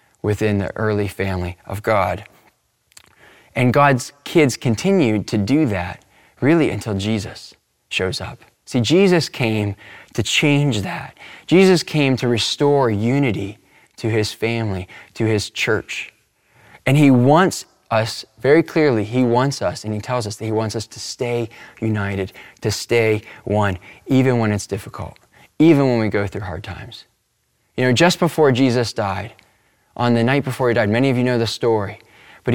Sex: male